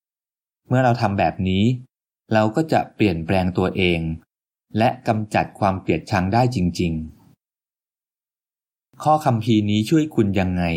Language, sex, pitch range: Thai, male, 95-125 Hz